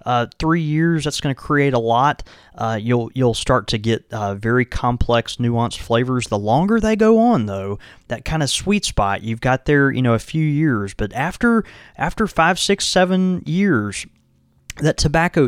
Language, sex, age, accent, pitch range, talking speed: English, male, 20-39, American, 105-140 Hz, 180 wpm